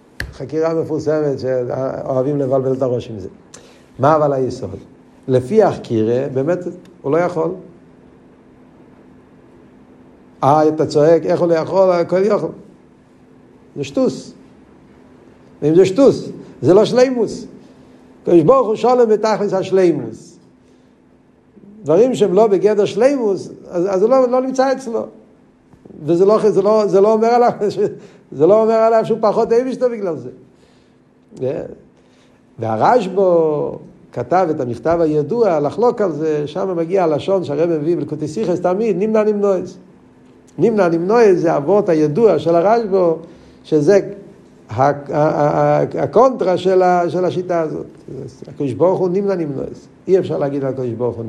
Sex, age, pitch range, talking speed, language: male, 60-79, 145-200 Hz, 130 wpm, Hebrew